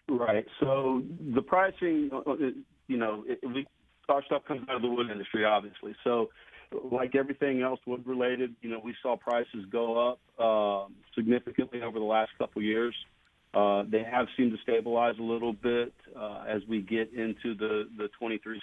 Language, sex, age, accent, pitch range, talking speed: English, male, 40-59, American, 110-125 Hz, 180 wpm